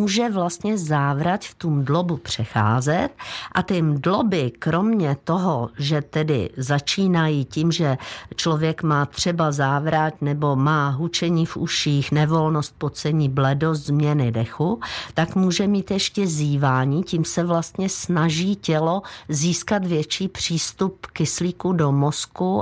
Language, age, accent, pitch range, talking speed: Czech, 50-69, native, 145-185 Hz, 125 wpm